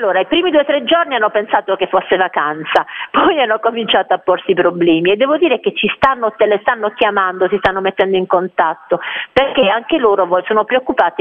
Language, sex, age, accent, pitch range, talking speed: Italian, female, 40-59, native, 180-240 Hz, 205 wpm